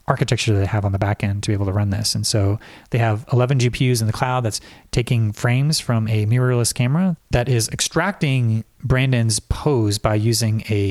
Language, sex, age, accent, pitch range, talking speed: English, male, 30-49, American, 105-130 Hz, 210 wpm